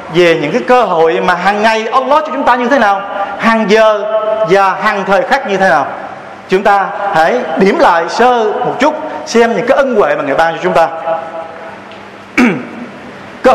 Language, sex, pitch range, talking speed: Vietnamese, male, 190-245 Hz, 195 wpm